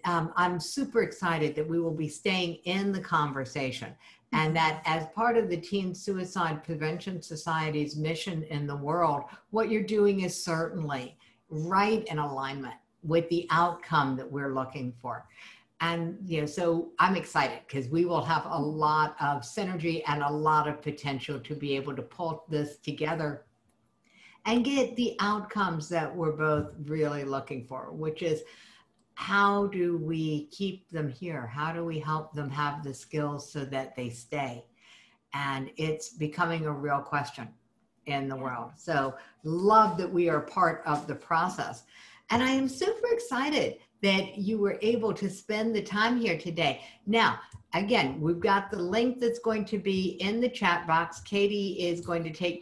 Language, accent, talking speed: English, American, 170 wpm